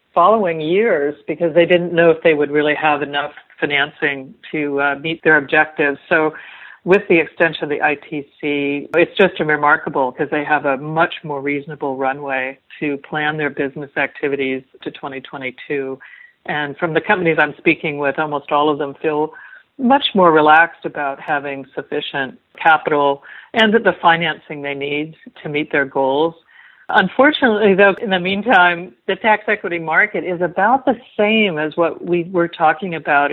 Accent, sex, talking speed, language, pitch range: American, female, 160 wpm, English, 145-180 Hz